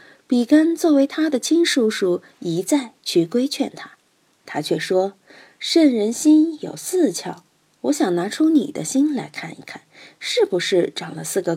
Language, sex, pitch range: Chinese, female, 185-295 Hz